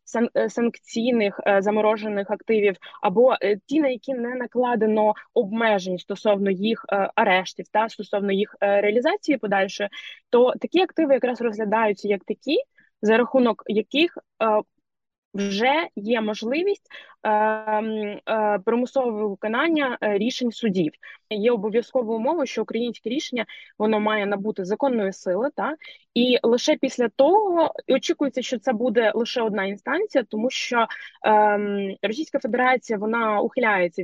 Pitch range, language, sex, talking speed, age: 205-265 Hz, Ukrainian, female, 120 wpm, 20-39